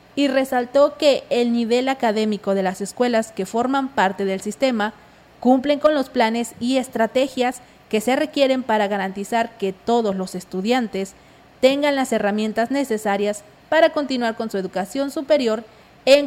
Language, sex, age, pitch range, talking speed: Spanish, female, 30-49, 220-275 Hz, 150 wpm